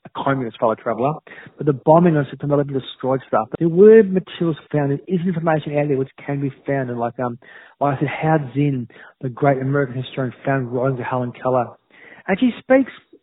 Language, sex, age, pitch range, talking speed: English, male, 40-59, 140-180 Hz, 195 wpm